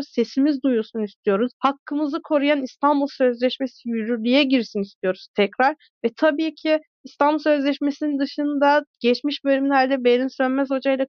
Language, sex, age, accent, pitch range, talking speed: Turkish, female, 30-49, native, 235-280 Hz, 120 wpm